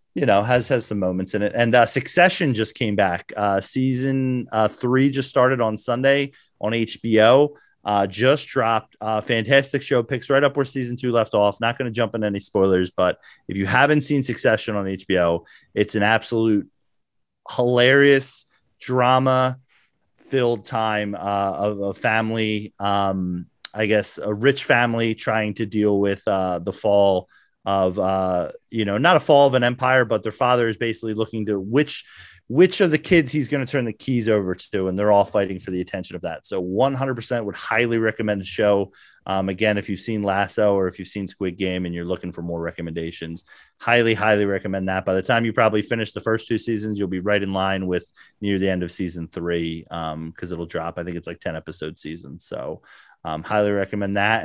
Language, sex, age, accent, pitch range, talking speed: English, male, 30-49, American, 95-120 Hz, 200 wpm